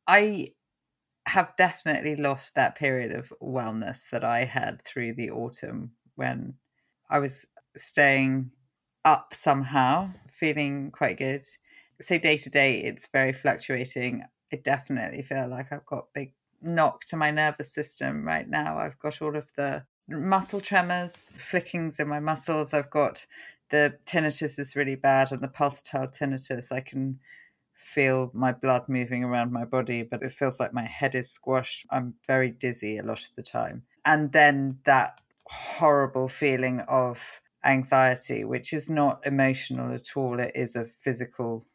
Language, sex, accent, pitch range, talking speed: English, female, British, 130-145 Hz, 155 wpm